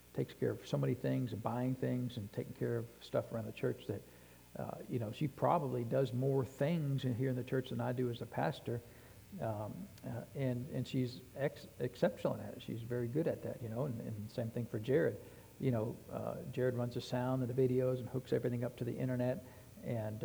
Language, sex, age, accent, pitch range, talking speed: English, male, 60-79, American, 115-130 Hz, 225 wpm